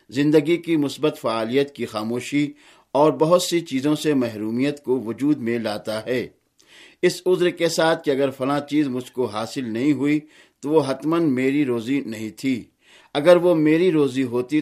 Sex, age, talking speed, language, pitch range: male, 50-69, 170 wpm, Urdu, 125-155 Hz